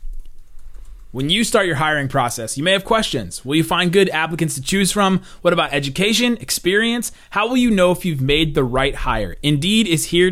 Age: 30-49